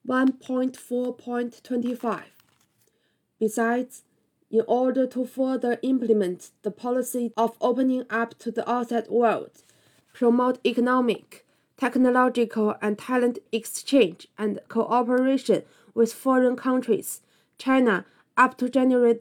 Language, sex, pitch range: Chinese, female, 225-255 Hz